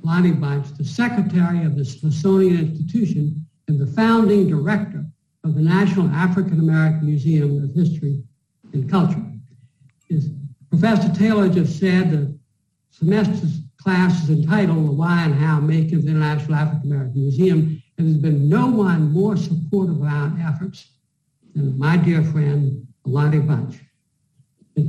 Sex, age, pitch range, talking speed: male, 60-79, 150-185 Hz, 145 wpm